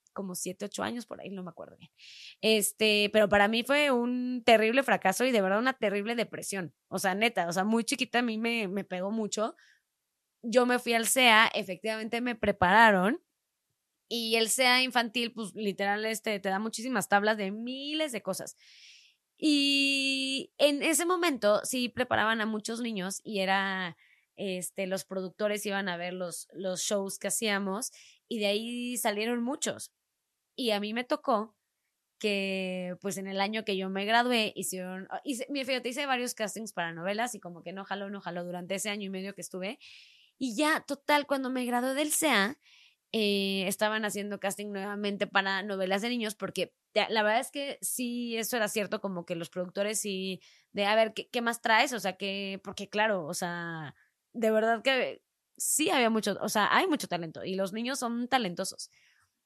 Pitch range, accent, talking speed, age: 195-240 Hz, Mexican, 190 wpm, 20-39